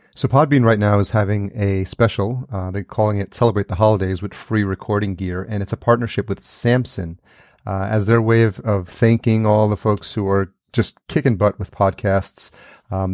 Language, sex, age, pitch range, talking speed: English, male, 30-49, 95-110 Hz, 195 wpm